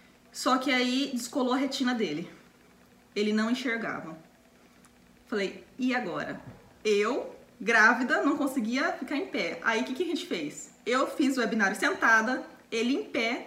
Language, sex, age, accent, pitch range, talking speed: Portuguese, female, 20-39, Brazilian, 225-275 Hz, 155 wpm